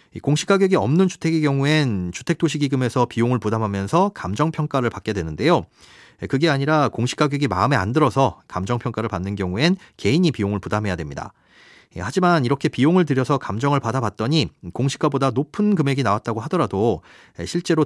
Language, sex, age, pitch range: Korean, male, 30-49, 110-160 Hz